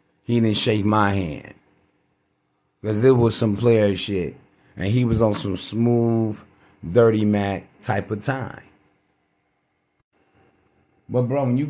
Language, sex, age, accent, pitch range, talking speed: English, male, 30-49, American, 100-125 Hz, 135 wpm